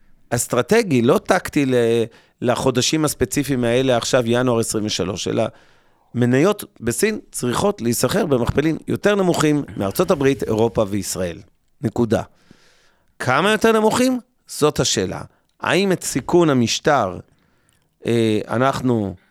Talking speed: 100 wpm